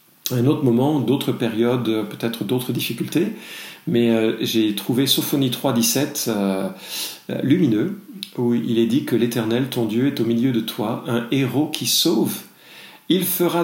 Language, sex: French, male